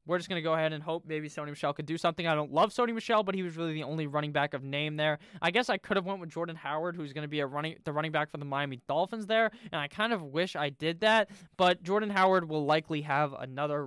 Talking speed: 295 wpm